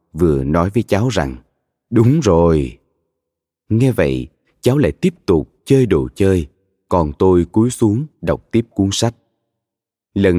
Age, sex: 20-39, male